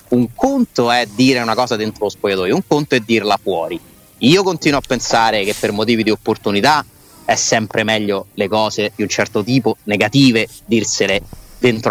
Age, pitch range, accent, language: 30-49, 110-145 Hz, native, Italian